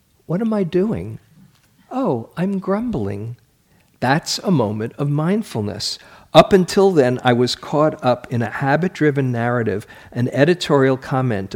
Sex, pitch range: male, 125-190 Hz